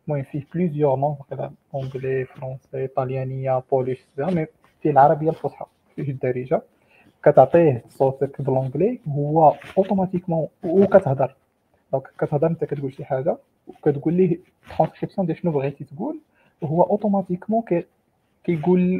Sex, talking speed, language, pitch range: male, 125 wpm, Arabic, 135-175 Hz